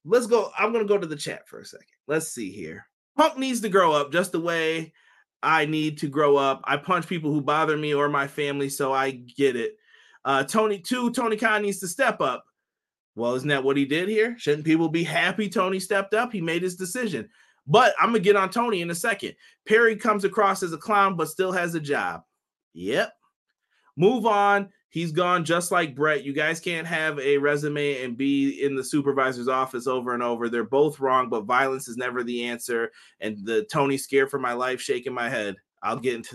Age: 30-49